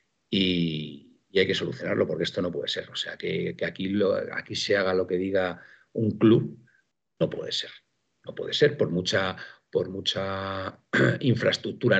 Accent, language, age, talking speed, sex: Spanish, Spanish, 50-69, 175 wpm, male